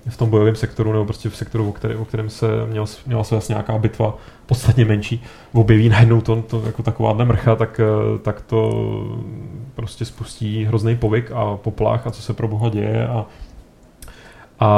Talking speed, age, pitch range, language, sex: 185 wpm, 30-49, 105-115 Hz, Czech, male